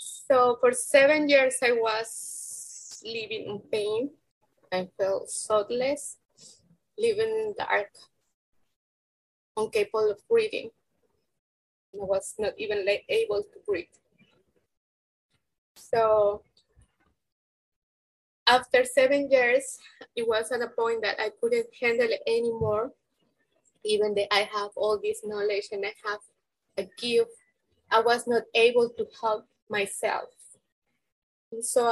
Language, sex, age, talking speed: English, female, 20-39, 115 wpm